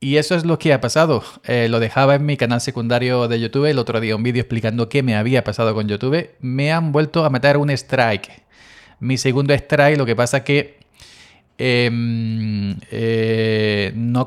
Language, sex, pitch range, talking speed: Spanish, male, 115-135 Hz, 185 wpm